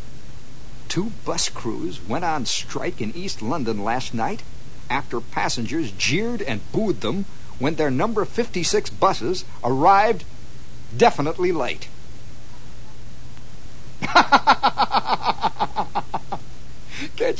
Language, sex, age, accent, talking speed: English, male, 60-79, American, 90 wpm